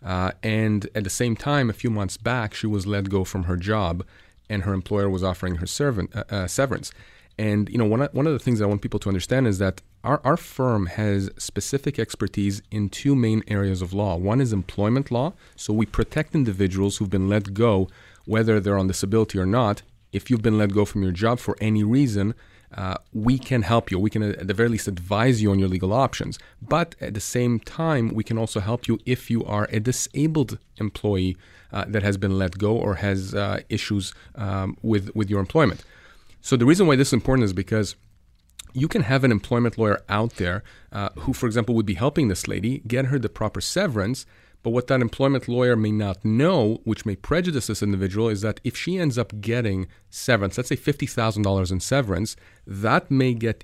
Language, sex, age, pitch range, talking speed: English, male, 30-49, 100-125 Hz, 215 wpm